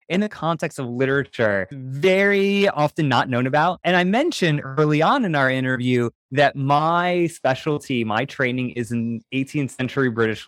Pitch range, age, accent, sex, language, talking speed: 125-165 Hz, 20-39, American, male, English, 160 wpm